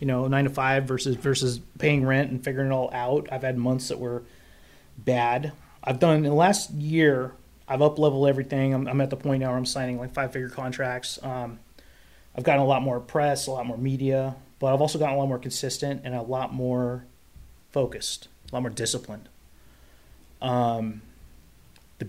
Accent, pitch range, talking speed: American, 120-140 Hz, 195 wpm